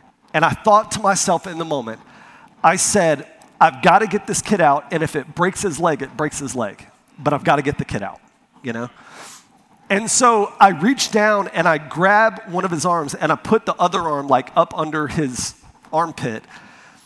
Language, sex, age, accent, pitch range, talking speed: English, male, 40-59, American, 185-265 Hz, 210 wpm